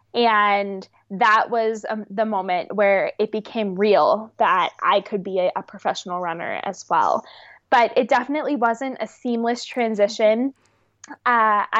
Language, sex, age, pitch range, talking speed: English, female, 20-39, 205-235 Hz, 140 wpm